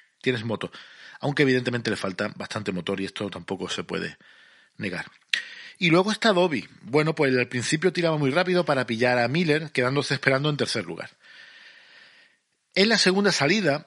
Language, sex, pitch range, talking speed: Spanish, male, 120-150 Hz, 165 wpm